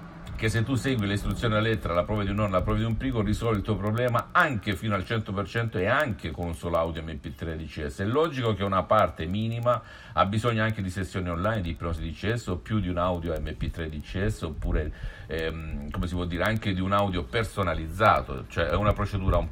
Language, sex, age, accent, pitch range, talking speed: Italian, male, 50-69, native, 85-110 Hz, 220 wpm